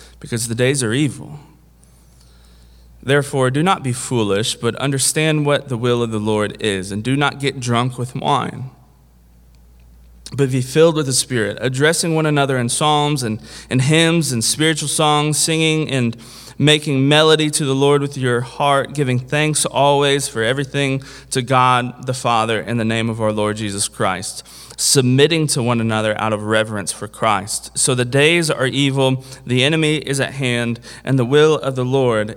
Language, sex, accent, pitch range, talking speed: English, male, American, 105-150 Hz, 175 wpm